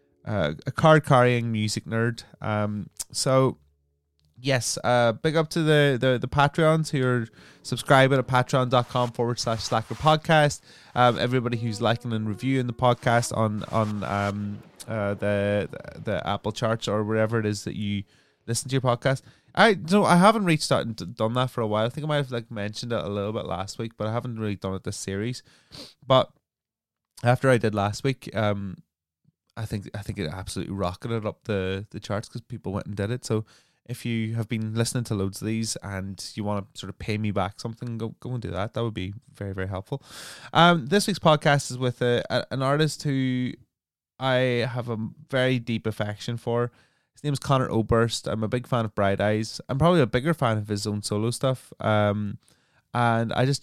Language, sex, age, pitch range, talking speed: English, male, 20-39, 105-130 Hz, 205 wpm